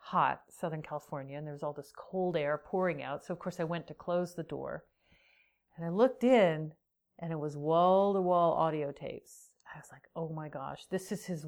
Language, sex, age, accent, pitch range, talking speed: English, female, 40-59, American, 150-185 Hz, 210 wpm